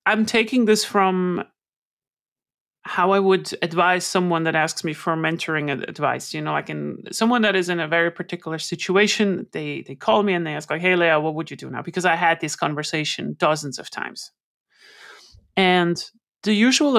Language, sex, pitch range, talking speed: Italian, male, 165-210 Hz, 185 wpm